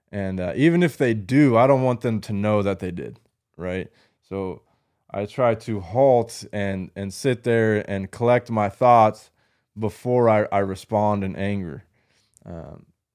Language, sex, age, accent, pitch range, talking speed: English, male, 20-39, American, 105-120 Hz, 165 wpm